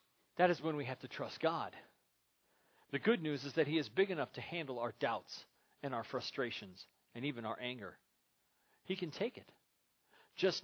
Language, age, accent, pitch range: English, 40-59, American, 130-185 Hz